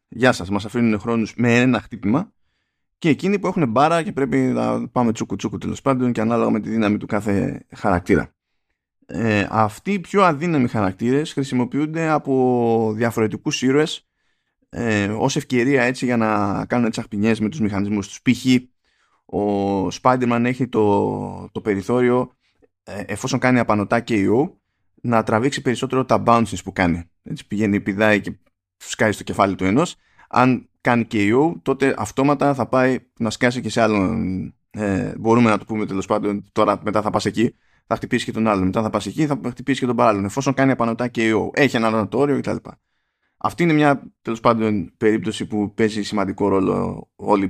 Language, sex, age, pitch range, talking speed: Greek, male, 20-39, 105-125 Hz, 170 wpm